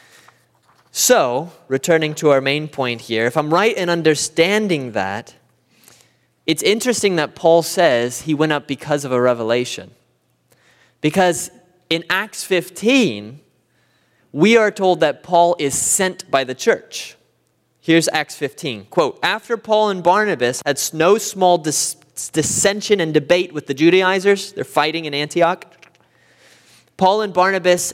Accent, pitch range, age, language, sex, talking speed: American, 130-180 Hz, 20-39, English, male, 135 wpm